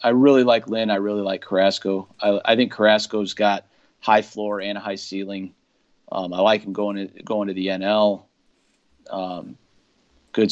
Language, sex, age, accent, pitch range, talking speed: English, male, 40-59, American, 95-110 Hz, 175 wpm